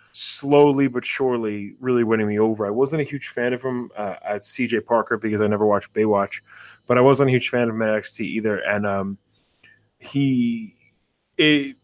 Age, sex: 20-39, male